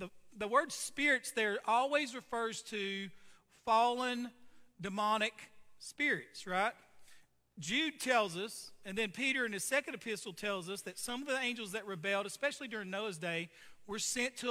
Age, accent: 40-59, American